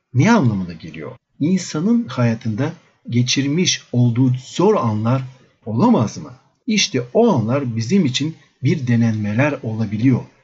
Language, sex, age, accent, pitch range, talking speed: Turkish, male, 50-69, native, 120-160 Hz, 110 wpm